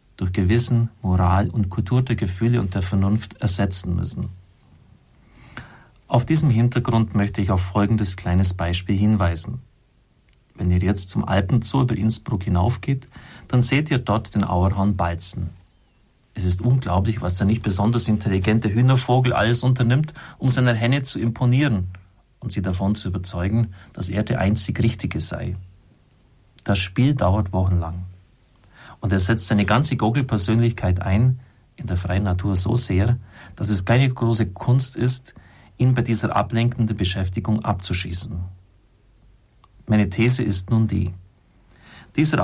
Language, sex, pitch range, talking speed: German, male, 95-115 Hz, 140 wpm